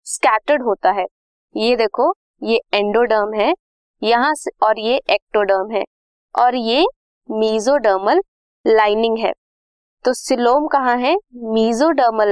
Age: 20-39